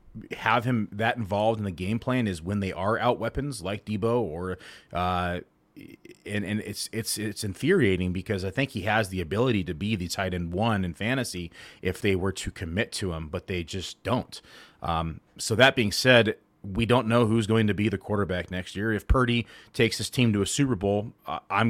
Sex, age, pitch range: male, 30-49, 90-110 Hz